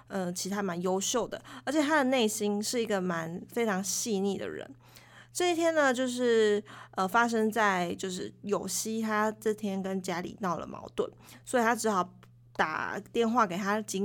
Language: Chinese